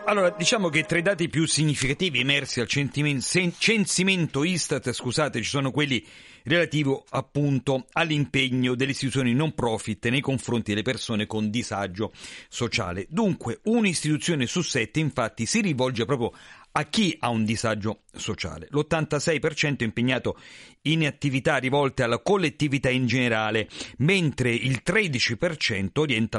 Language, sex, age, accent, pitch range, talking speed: Italian, male, 40-59, native, 115-160 Hz, 135 wpm